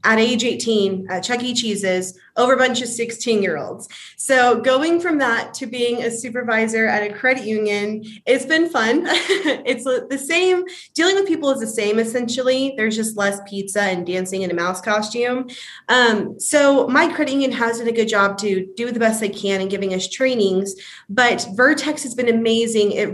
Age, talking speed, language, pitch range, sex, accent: 20-39, 185 wpm, English, 200-250 Hz, female, American